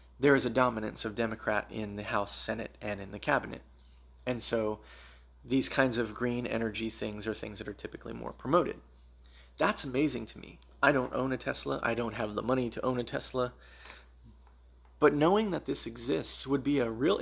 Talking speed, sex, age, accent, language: 195 wpm, male, 30-49, American, English